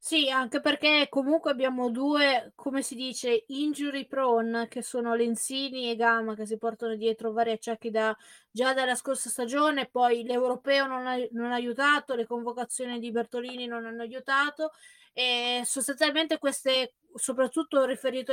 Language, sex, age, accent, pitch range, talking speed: Italian, female, 20-39, native, 235-285 Hz, 150 wpm